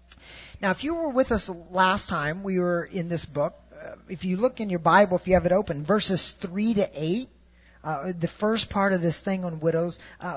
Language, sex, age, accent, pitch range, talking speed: English, male, 40-59, American, 175-220 Hz, 225 wpm